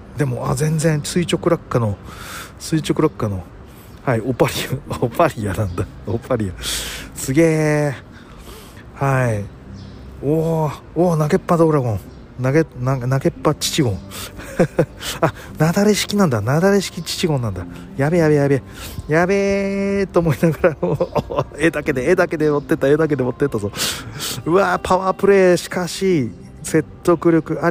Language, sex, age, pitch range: Japanese, male, 40-59, 115-165 Hz